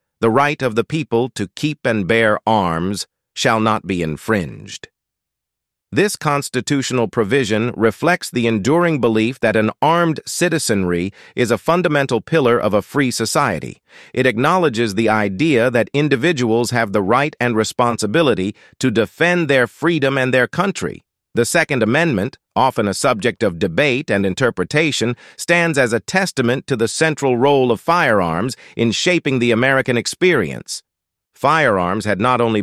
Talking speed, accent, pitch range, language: 145 wpm, American, 105-135 Hz, English